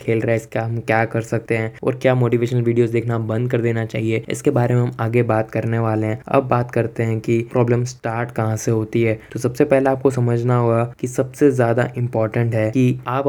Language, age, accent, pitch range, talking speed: Hindi, 10-29, native, 115-125 Hz, 230 wpm